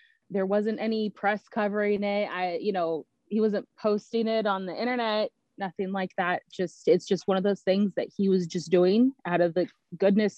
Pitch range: 180-210 Hz